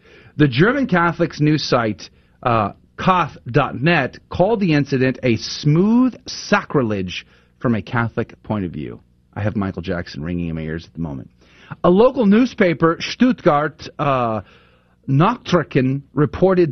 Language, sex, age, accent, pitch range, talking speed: English, male, 40-59, American, 115-170 Hz, 135 wpm